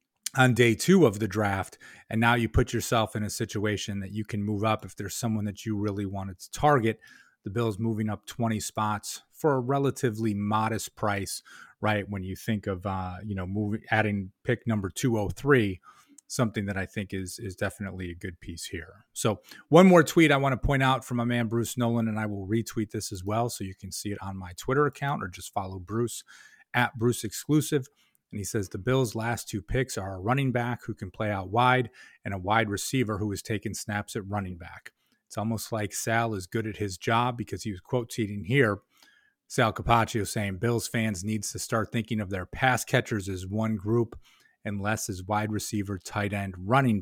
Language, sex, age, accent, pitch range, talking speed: English, male, 30-49, American, 100-120 Hz, 210 wpm